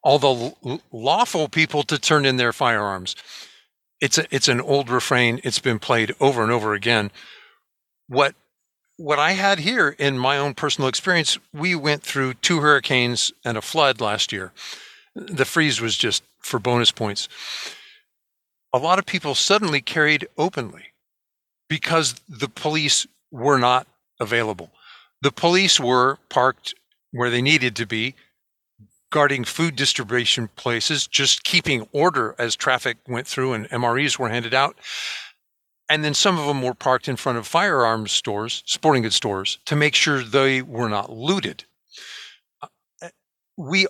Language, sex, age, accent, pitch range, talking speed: English, male, 50-69, American, 120-155 Hz, 150 wpm